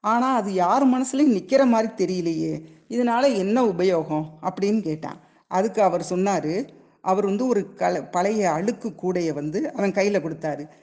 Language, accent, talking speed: Tamil, native, 145 wpm